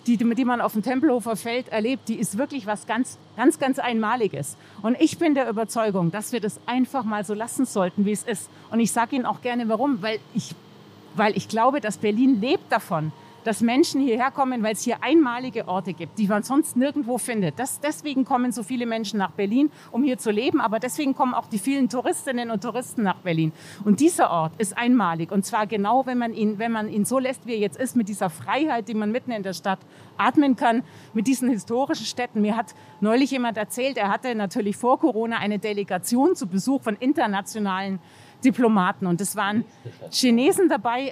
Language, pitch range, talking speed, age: German, 205-260 Hz, 205 wpm, 40-59